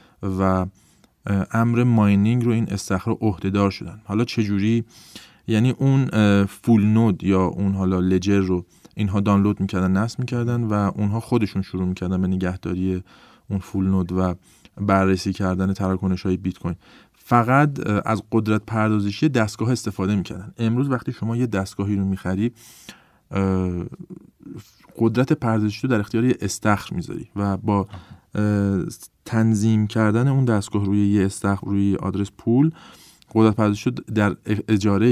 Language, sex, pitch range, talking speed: Persian, male, 100-115 Hz, 140 wpm